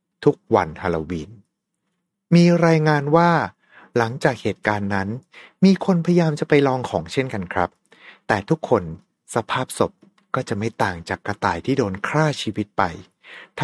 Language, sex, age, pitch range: Thai, male, 60-79, 105-155 Hz